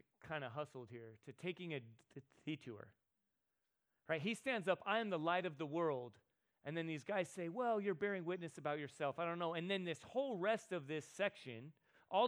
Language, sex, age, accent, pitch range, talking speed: English, male, 30-49, American, 150-200 Hz, 205 wpm